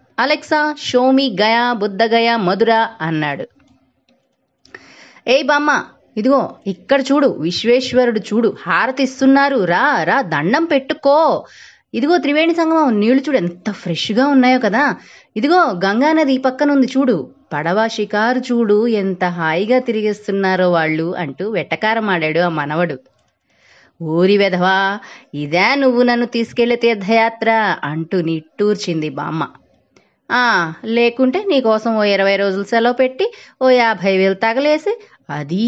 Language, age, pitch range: Telugu, 20-39, 190-265 Hz